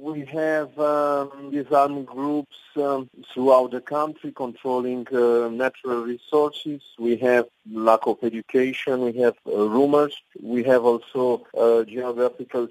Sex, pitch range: male, 115-135 Hz